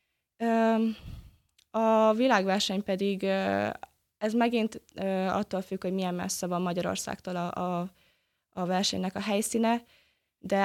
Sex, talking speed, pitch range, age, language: female, 100 wpm, 190-225 Hz, 20-39, Hungarian